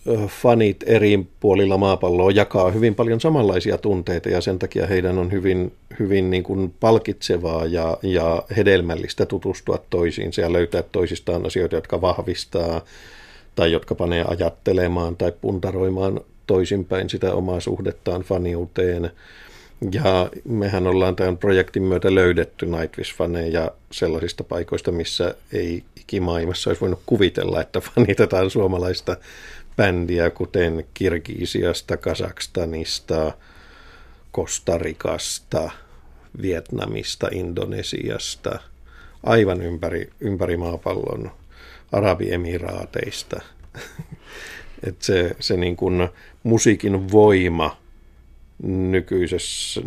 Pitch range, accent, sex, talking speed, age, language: 85-95 Hz, native, male, 95 wpm, 50-69, Finnish